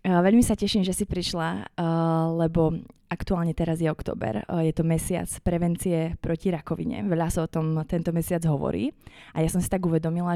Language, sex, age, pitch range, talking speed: Slovak, female, 20-39, 160-180 Hz, 175 wpm